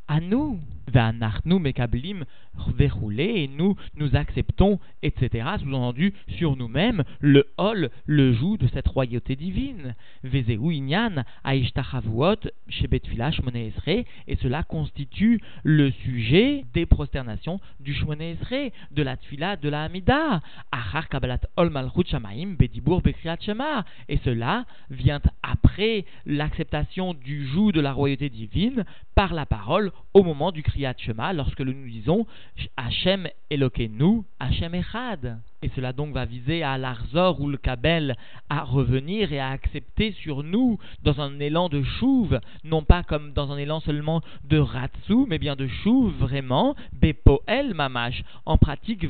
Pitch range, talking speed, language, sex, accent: 130-185 Hz, 120 wpm, French, male, French